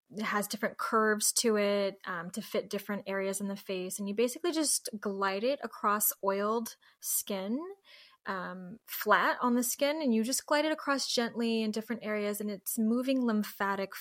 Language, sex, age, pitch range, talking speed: English, female, 10-29, 200-235 Hz, 180 wpm